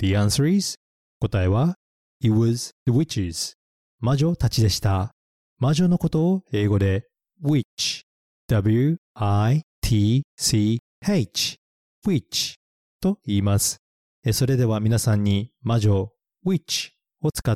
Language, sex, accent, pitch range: Japanese, male, native, 100-145 Hz